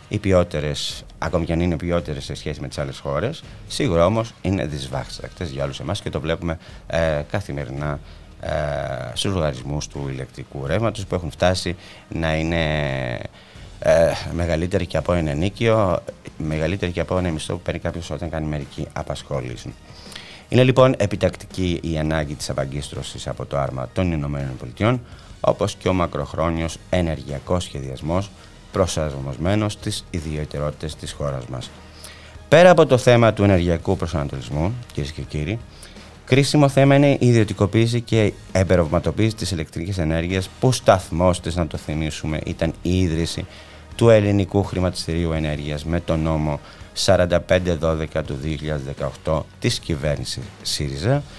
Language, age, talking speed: Greek, 30-49, 135 wpm